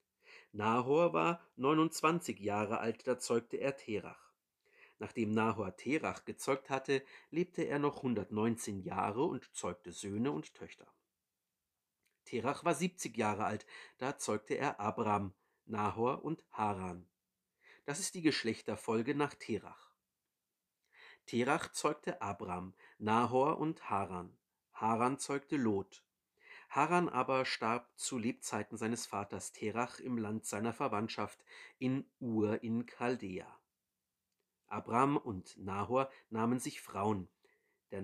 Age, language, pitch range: 50-69, German, 105-135 Hz